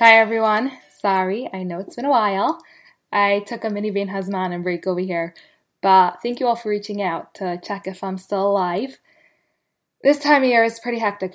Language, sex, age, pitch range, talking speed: English, female, 10-29, 190-235 Hz, 200 wpm